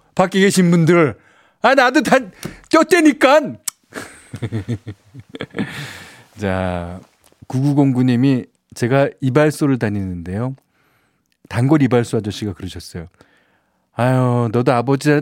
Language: Korean